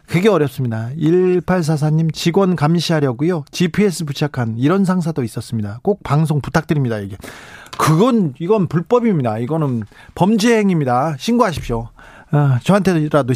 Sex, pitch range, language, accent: male, 130-175 Hz, Korean, native